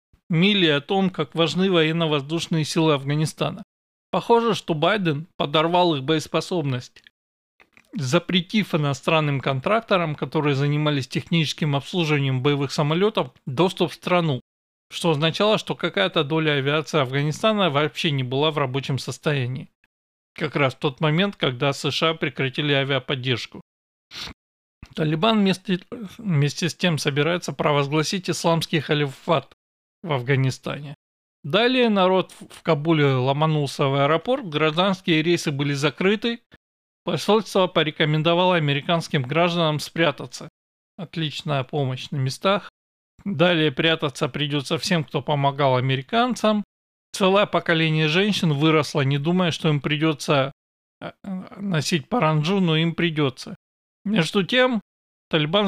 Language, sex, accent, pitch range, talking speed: Russian, male, native, 145-175 Hz, 110 wpm